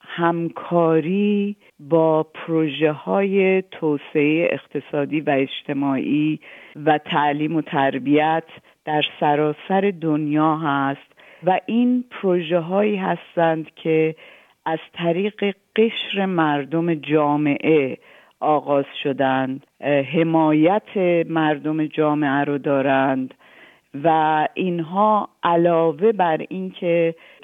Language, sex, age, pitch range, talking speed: Persian, female, 50-69, 145-170 Hz, 80 wpm